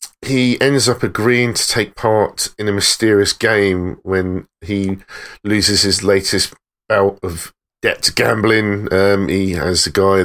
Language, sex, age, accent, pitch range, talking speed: English, male, 40-59, British, 95-110 Hz, 150 wpm